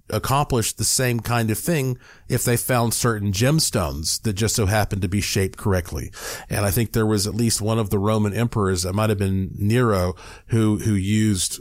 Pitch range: 100-125 Hz